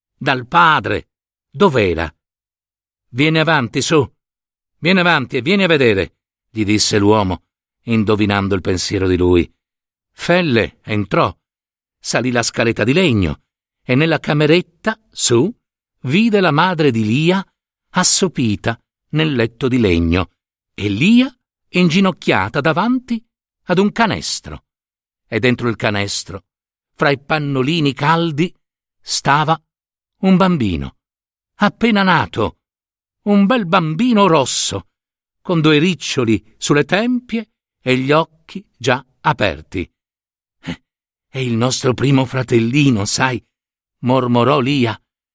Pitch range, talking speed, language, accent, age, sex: 105-165 Hz, 110 wpm, Italian, native, 60-79, male